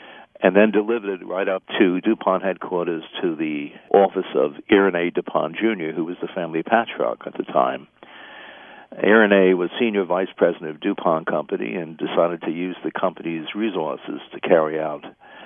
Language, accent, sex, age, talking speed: English, American, male, 60-79, 165 wpm